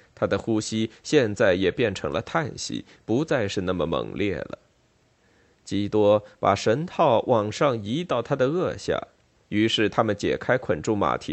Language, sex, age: Chinese, male, 20-39